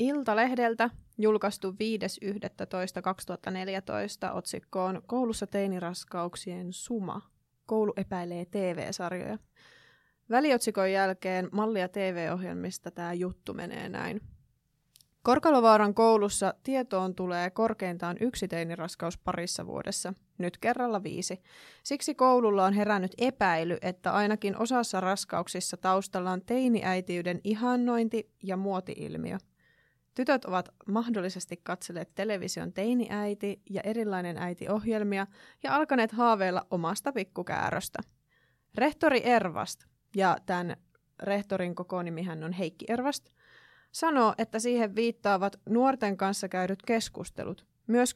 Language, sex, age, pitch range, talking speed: Finnish, female, 20-39, 180-230 Hz, 95 wpm